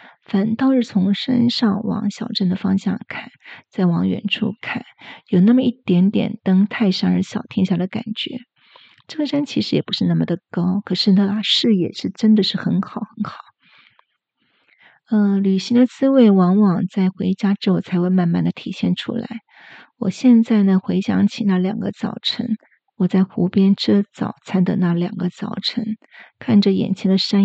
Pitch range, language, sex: 190-220 Hz, Chinese, female